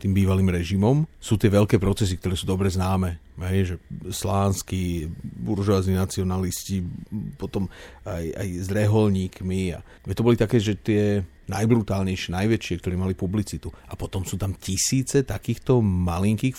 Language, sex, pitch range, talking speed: Slovak, male, 90-105 Hz, 135 wpm